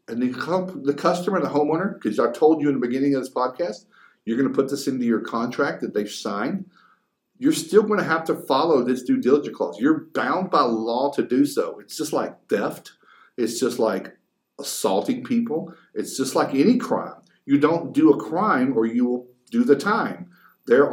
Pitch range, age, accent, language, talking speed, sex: 115-180 Hz, 50-69, American, English, 200 wpm, male